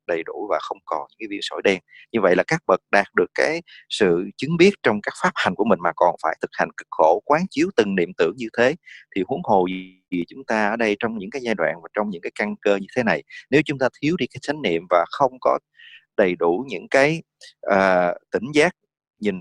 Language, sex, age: English, male, 30-49